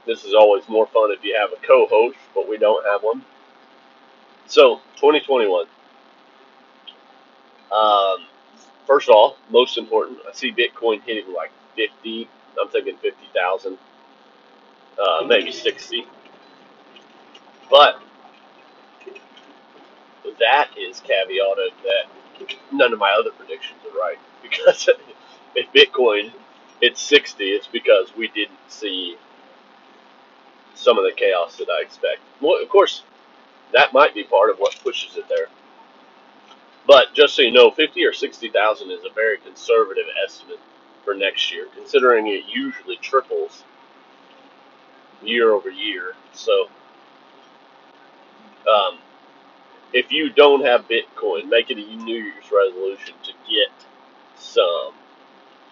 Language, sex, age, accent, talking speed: English, male, 30-49, American, 125 wpm